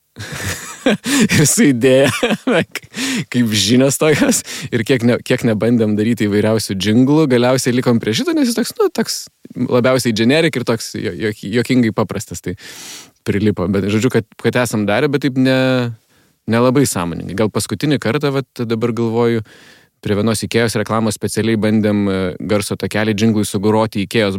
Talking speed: 155 wpm